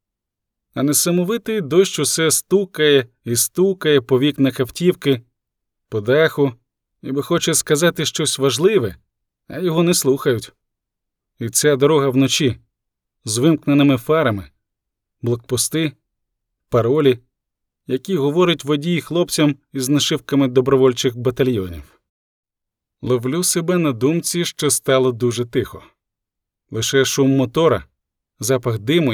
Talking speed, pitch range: 105 wpm, 120-150 Hz